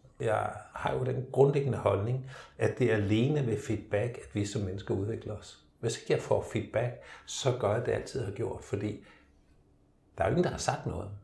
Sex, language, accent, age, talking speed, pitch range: male, Danish, native, 60-79, 215 wpm, 95-120 Hz